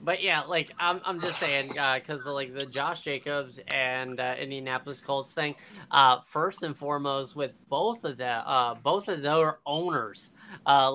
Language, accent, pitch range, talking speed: English, American, 150-195 Hz, 175 wpm